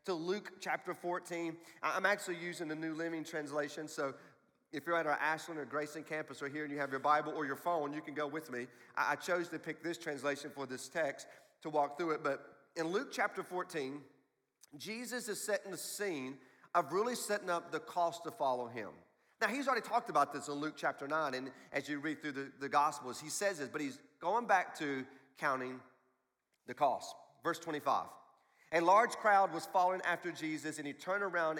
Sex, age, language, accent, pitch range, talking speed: male, 40-59, English, American, 145-180 Hz, 205 wpm